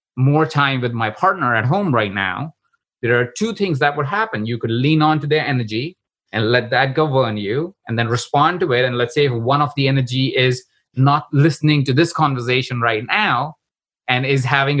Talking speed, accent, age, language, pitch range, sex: 210 wpm, Indian, 30-49, English, 120-155 Hz, male